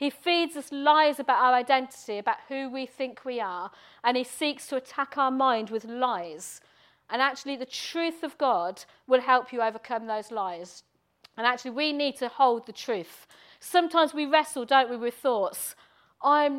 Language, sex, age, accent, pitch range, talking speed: English, female, 40-59, British, 240-295 Hz, 180 wpm